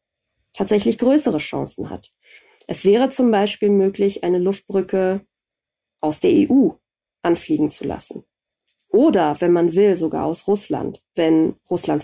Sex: female